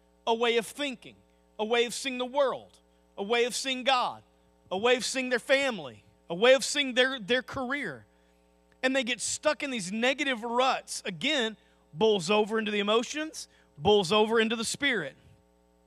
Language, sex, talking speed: English, male, 180 wpm